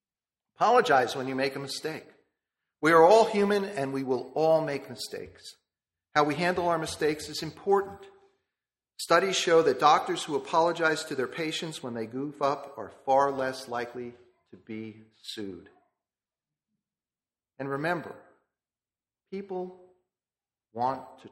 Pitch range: 120-165 Hz